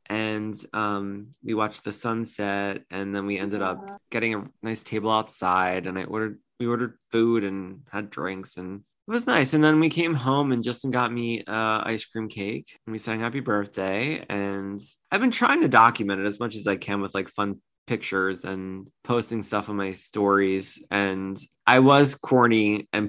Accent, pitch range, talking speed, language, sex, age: American, 100-130 Hz, 190 wpm, English, male, 20-39